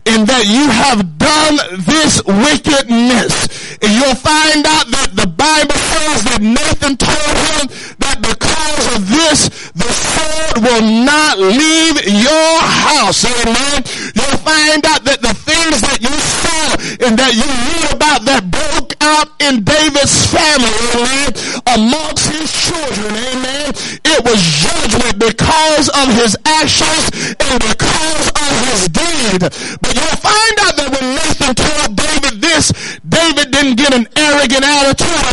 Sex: male